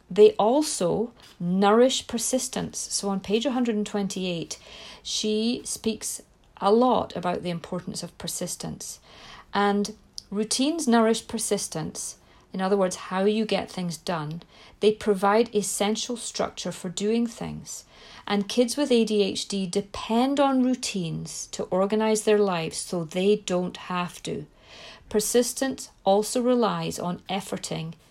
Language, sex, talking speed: English, female, 120 wpm